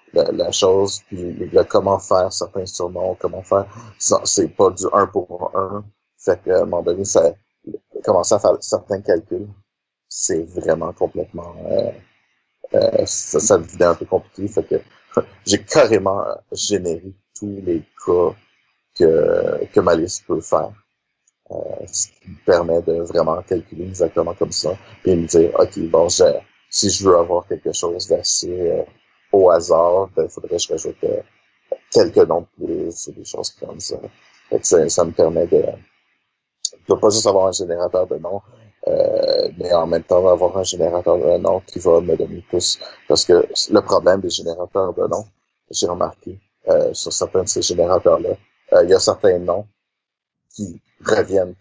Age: 50-69